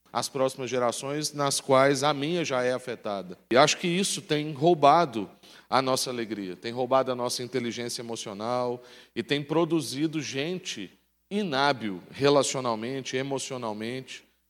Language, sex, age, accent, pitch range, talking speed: Portuguese, male, 40-59, Brazilian, 125-150 Hz, 135 wpm